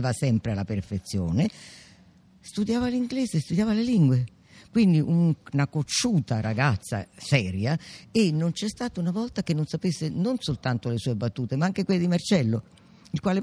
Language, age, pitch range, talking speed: Italian, 50-69, 125-185 Hz, 155 wpm